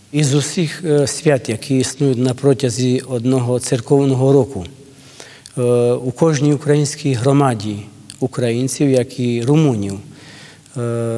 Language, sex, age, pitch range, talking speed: Ukrainian, male, 40-59, 125-140 Hz, 105 wpm